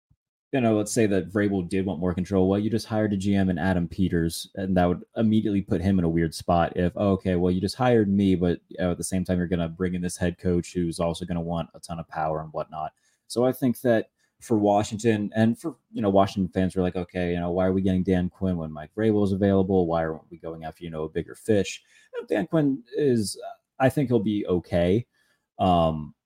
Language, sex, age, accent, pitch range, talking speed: English, male, 20-39, American, 85-100 Hz, 255 wpm